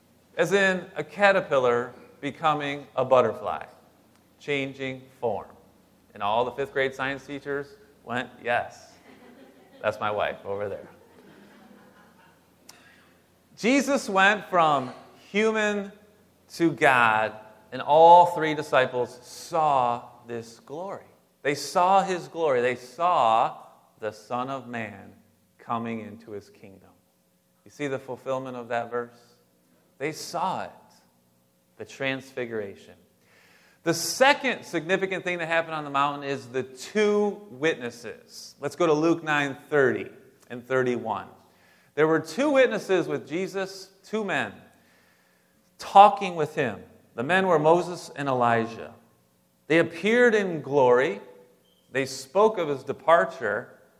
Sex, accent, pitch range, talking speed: male, American, 120-175 Hz, 120 wpm